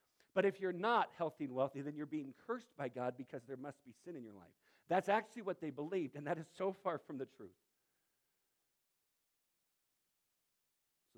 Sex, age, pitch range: male, 50-69, 140-175 Hz